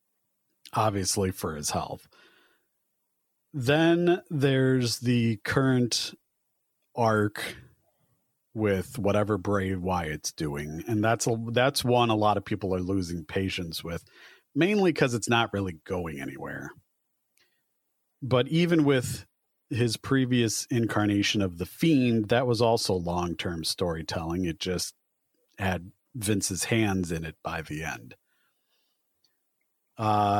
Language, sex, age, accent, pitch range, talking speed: English, male, 40-59, American, 100-130 Hz, 115 wpm